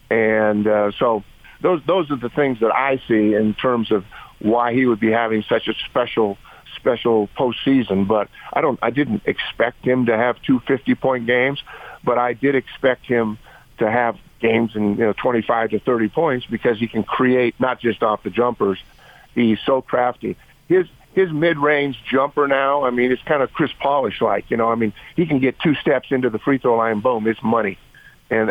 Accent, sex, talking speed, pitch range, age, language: American, male, 205 wpm, 115-150 Hz, 50-69, English